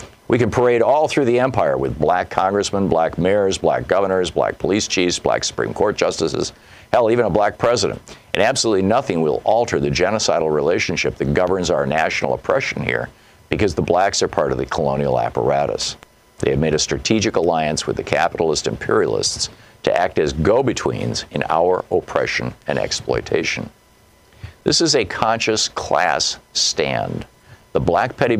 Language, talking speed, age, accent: English, 165 wpm, 50-69, American